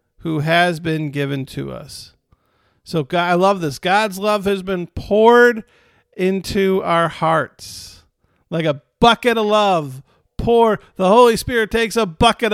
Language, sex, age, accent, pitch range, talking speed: English, male, 50-69, American, 160-210 Hz, 145 wpm